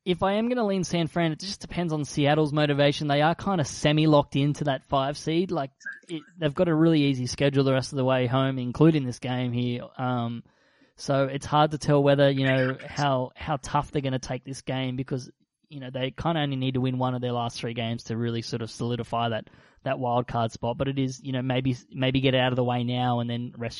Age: 20-39